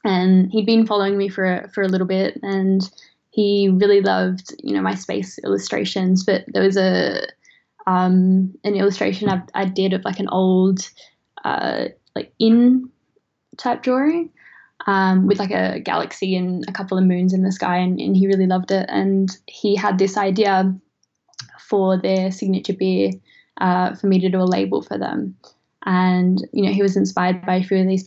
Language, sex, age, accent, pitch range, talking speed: English, female, 10-29, Australian, 185-205 Hz, 185 wpm